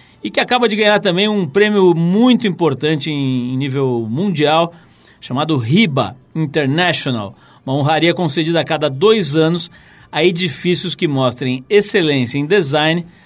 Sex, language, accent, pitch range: male, Portuguese, Brazilian, 140-190 Hz